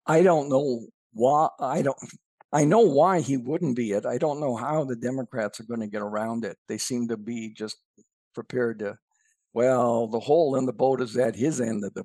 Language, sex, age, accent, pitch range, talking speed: English, male, 60-79, American, 120-165 Hz, 220 wpm